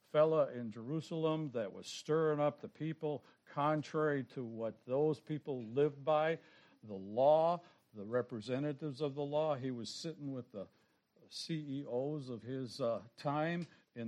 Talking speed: 145 wpm